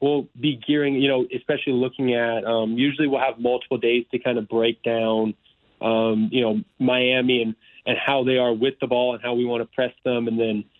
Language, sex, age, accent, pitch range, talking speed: English, male, 20-39, American, 115-130 Hz, 220 wpm